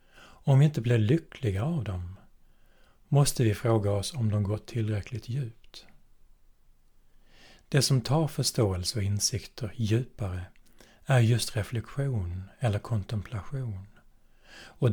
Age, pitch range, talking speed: 60-79, 100-125 Hz, 115 wpm